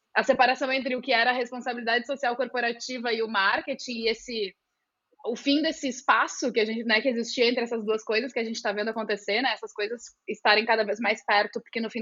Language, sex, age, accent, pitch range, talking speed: Portuguese, female, 20-39, Brazilian, 220-290 Hz, 230 wpm